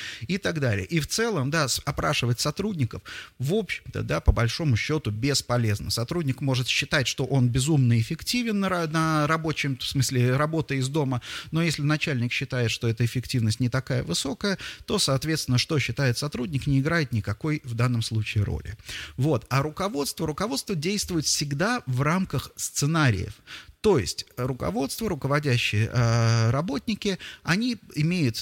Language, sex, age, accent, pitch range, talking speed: Russian, male, 30-49, native, 115-160 Hz, 145 wpm